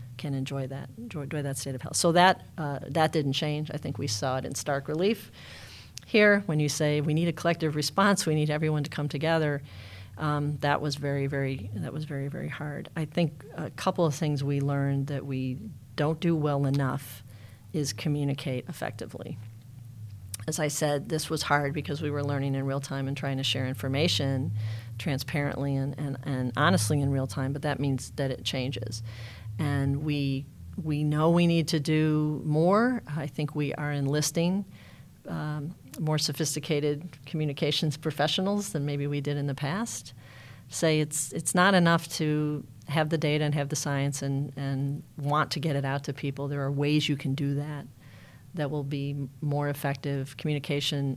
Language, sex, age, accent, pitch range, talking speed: English, female, 40-59, American, 135-150 Hz, 185 wpm